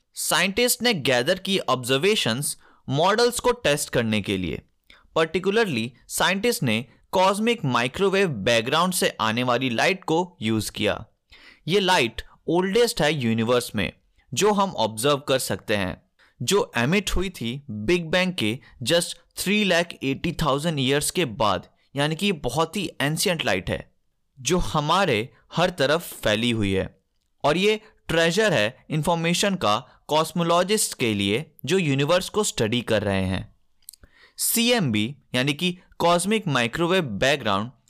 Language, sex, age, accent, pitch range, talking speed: Hindi, male, 30-49, native, 115-190 Hz, 135 wpm